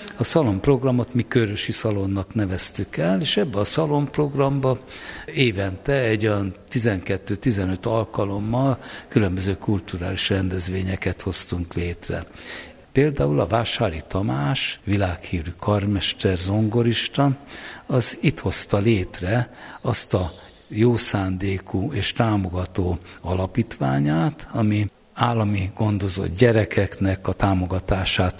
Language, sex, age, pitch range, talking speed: Hungarian, male, 60-79, 95-120 Hz, 95 wpm